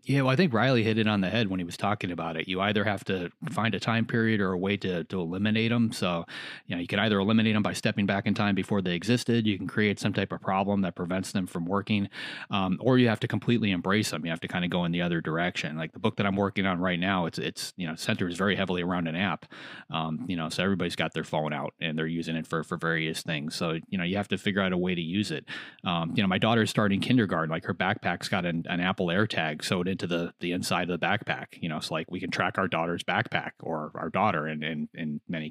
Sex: male